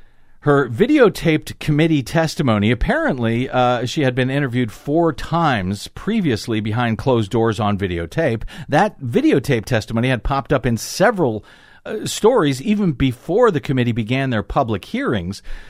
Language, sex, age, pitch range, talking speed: English, male, 50-69, 120-160 Hz, 140 wpm